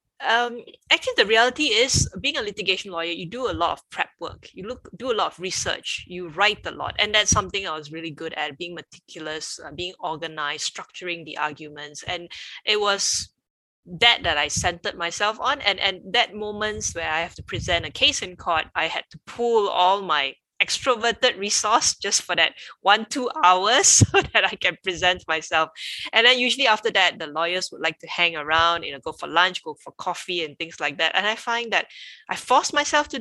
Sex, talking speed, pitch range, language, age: female, 210 wpm, 160-215 Hz, English, 20-39